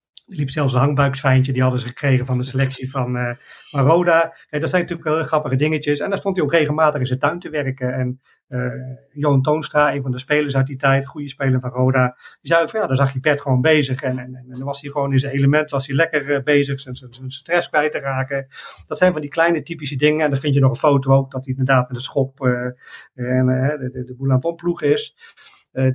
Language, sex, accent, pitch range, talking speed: Dutch, male, Dutch, 130-145 Hz, 270 wpm